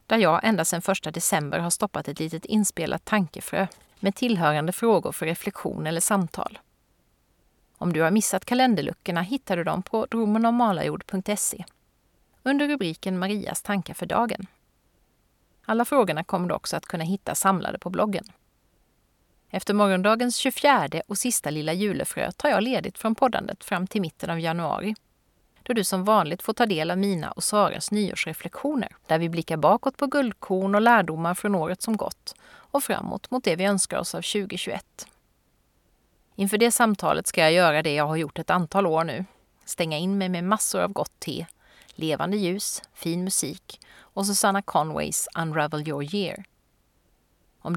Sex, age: female, 30-49